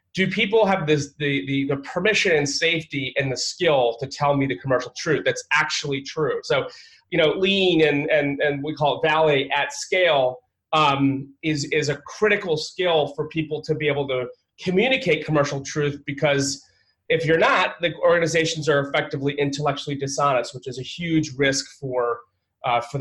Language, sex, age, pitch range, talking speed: English, male, 30-49, 140-165 Hz, 175 wpm